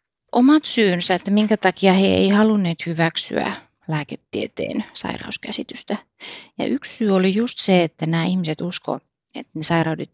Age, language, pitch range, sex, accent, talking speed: 30-49, Finnish, 160-215 Hz, female, native, 140 wpm